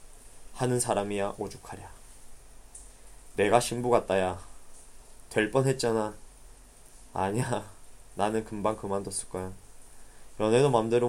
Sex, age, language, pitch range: male, 20-39, Korean, 100-120 Hz